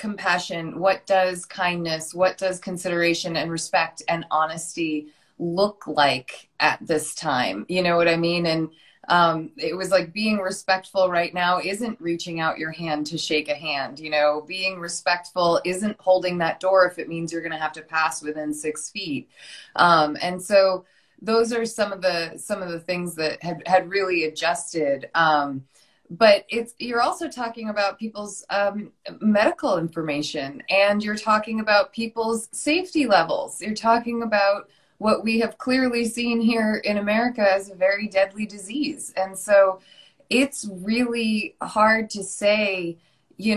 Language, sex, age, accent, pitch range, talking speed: English, female, 20-39, American, 165-210 Hz, 165 wpm